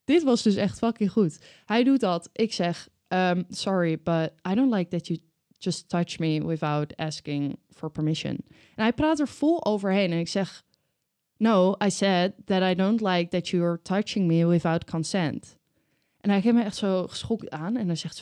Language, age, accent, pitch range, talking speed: Dutch, 20-39, Dutch, 170-225 Hz, 200 wpm